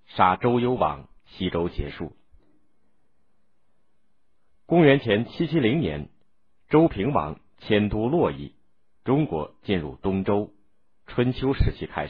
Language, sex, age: Chinese, male, 50-69